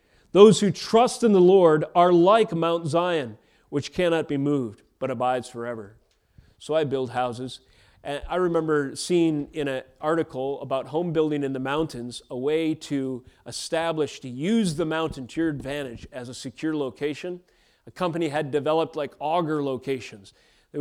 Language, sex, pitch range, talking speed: English, male, 135-165 Hz, 160 wpm